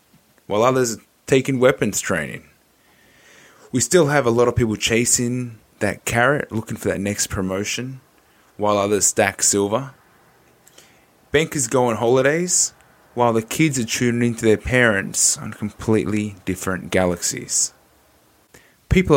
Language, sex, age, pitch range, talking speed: English, male, 20-39, 95-120 Hz, 130 wpm